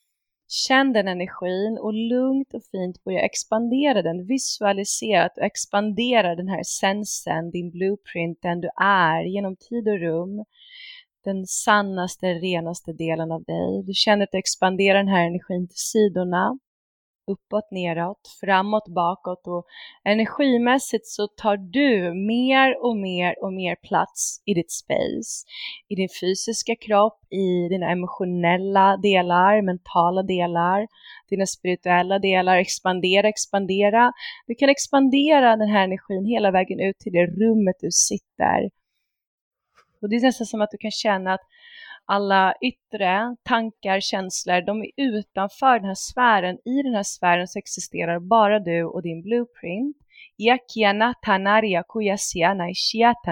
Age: 30-49